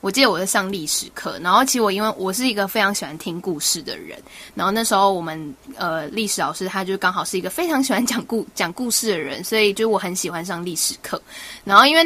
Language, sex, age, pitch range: Chinese, female, 10-29, 185-220 Hz